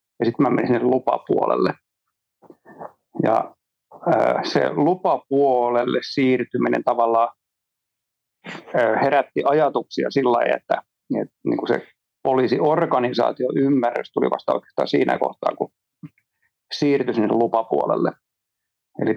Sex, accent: male, native